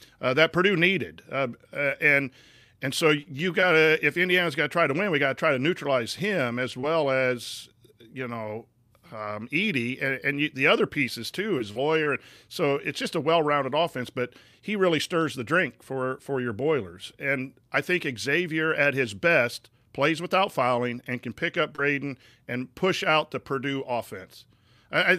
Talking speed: 195 wpm